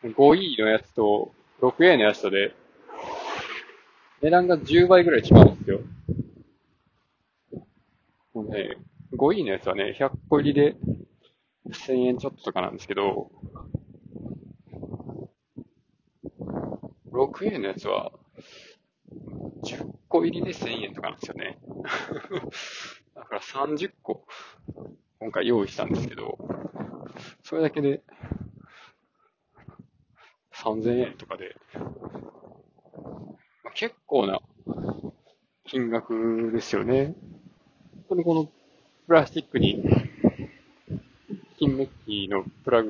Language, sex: Japanese, male